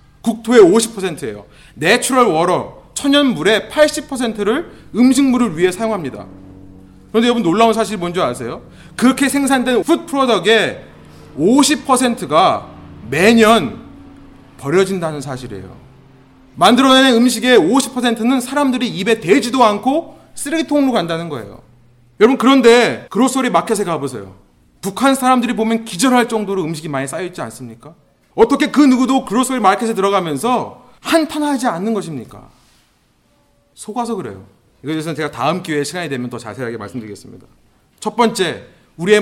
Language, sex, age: Korean, male, 30-49